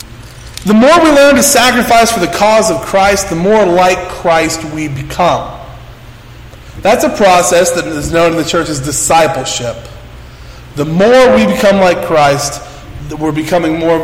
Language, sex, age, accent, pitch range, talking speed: English, male, 30-49, American, 140-195 Hz, 160 wpm